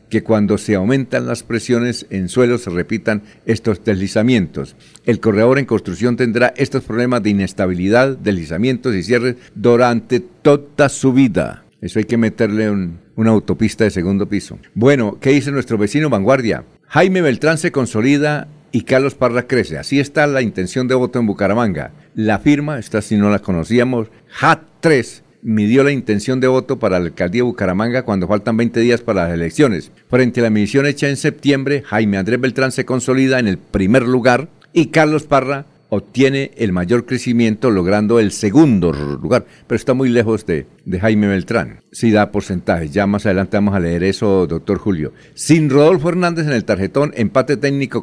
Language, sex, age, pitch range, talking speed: Spanish, male, 60-79, 105-130 Hz, 175 wpm